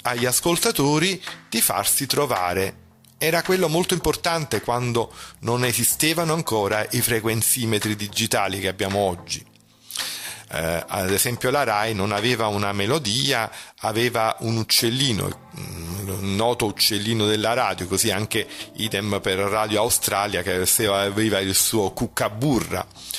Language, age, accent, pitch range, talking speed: Italian, 40-59, native, 100-135 Hz, 120 wpm